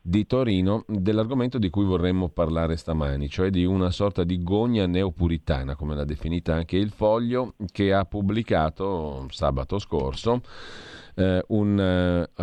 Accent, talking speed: native, 140 wpm